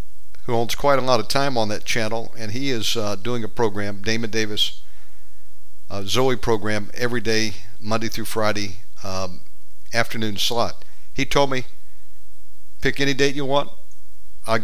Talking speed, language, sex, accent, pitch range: 155 wpm, English, male, American, 105-130 Hz